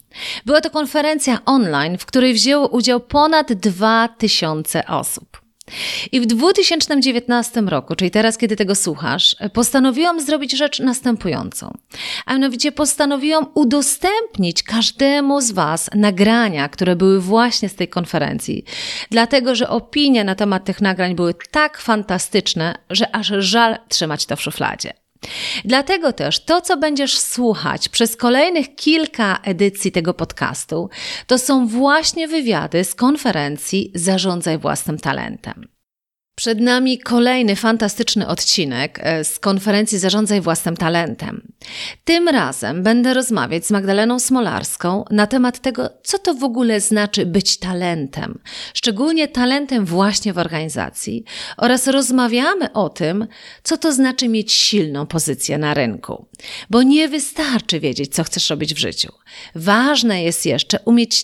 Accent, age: native, 40-59